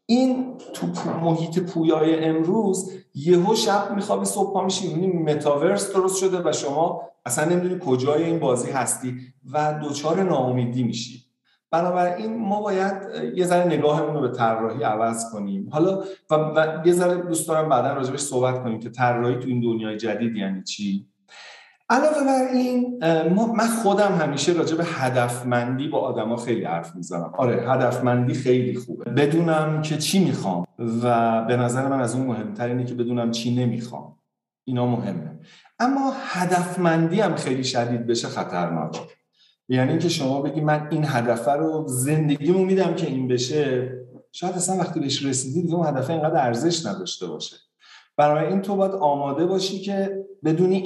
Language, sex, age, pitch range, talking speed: Persian, male, 50-69, 125-190 Hz, 150 wpm